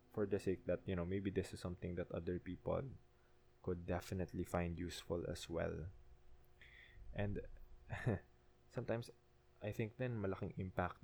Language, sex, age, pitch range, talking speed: English, male, 20-39, 80-100 Hz, 140 wpm